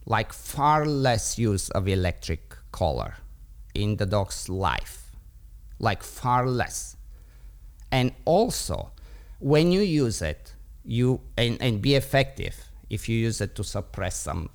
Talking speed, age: 130 wpm, 50-69